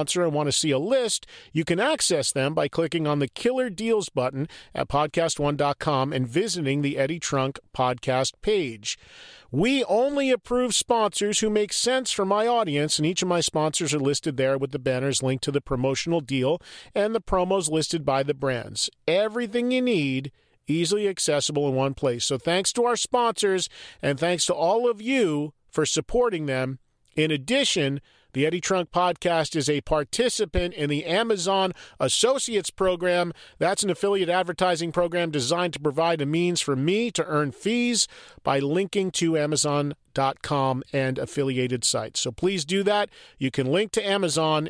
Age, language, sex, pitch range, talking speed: 40-59, English, male, 140-205 Hz, 170 wpm